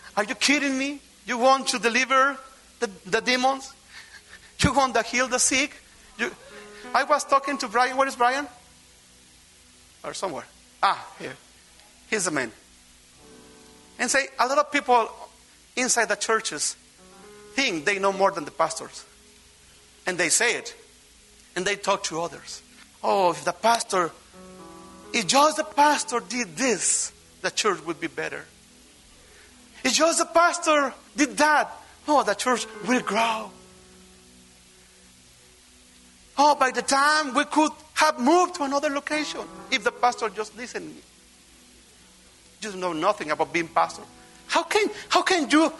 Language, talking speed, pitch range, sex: English, 145 wpm, 175-290 Hz, male